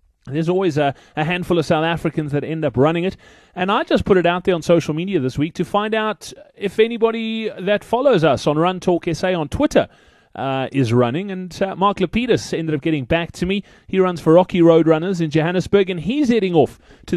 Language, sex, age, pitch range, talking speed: English, male, 30-49, 145-185 Hz, 225 wpm